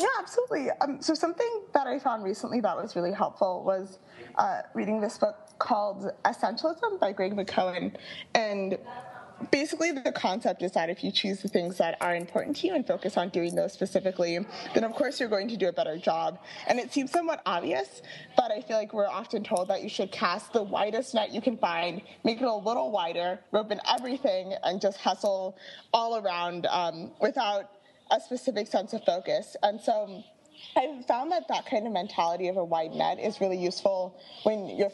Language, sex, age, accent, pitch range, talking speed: English, female, 20-39, American, 190-260 Hz, 195 wpm